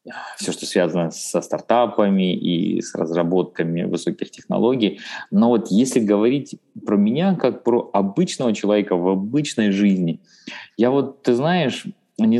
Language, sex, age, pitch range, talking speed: Russian, male, 20-39, 90-120 Hz, 135 wpm